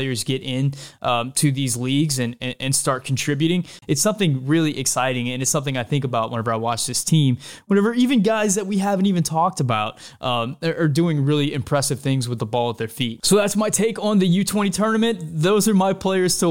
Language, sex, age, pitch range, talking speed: English, male, 20-39, 130-160 Hz, 220 wpm